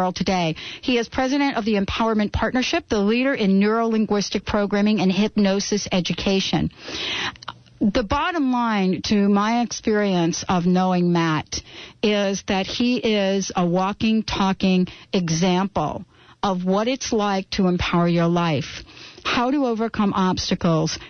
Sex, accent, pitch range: female, American, 180-215 Hz